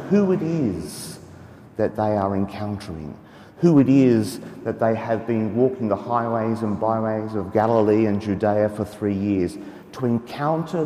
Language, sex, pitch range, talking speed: English, male, 100-125 Hz, 155 wpm